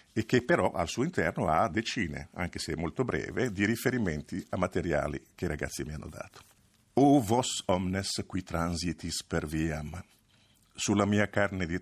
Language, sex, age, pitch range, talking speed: Italian, male, 50-69, 85-105 Hz, 170 wpm